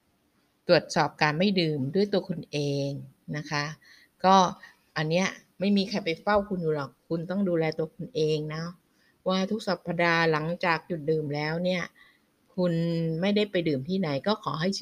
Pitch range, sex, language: 150-185 Hz, female, Thai